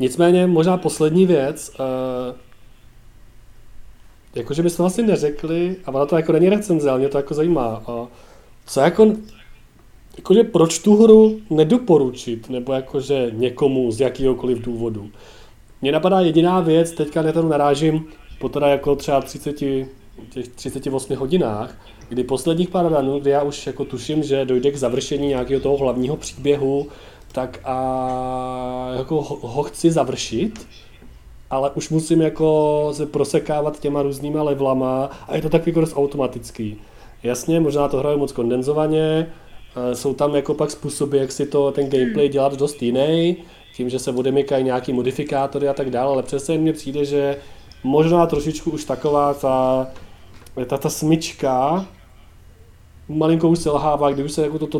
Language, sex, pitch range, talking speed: Czech, male, 125-155 Hz, 155 wpm